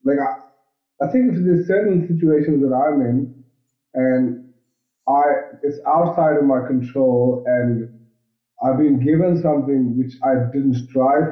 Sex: male